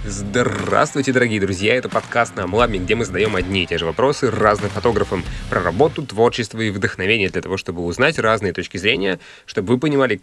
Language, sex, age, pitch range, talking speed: Russian, male, 20-39, 95-115 Hz, 190 wpm